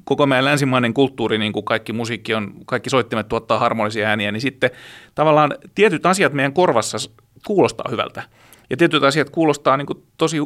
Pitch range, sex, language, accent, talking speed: 115-150 Hz, male, Finnish, native, 170 wpm